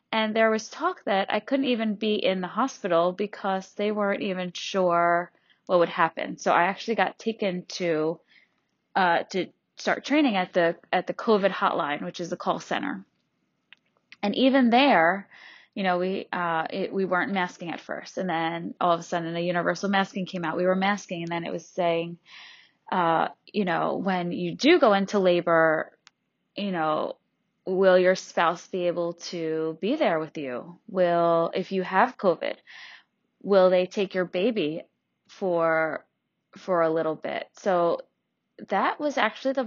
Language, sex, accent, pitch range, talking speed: English, female, American, 175-205 Hz, 170 wpm